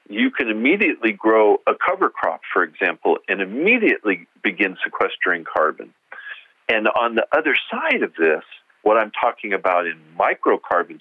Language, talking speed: English, 145 wpm